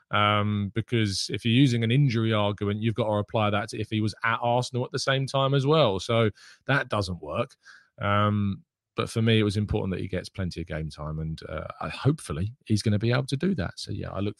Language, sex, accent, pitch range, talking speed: English, male, British, 100-125 Hz, 240 wpm